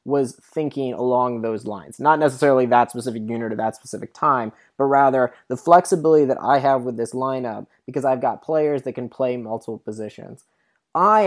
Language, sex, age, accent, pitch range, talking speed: English, male, 20-39, American, 120-145 Hz, 180 wpm